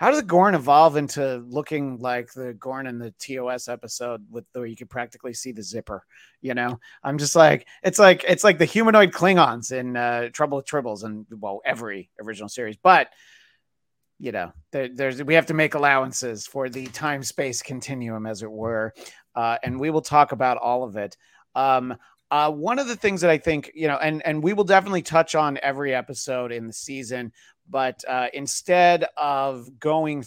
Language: English